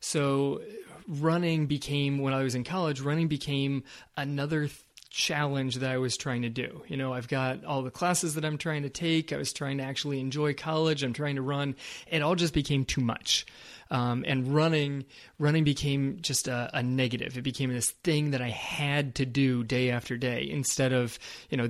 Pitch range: 125-155 Hz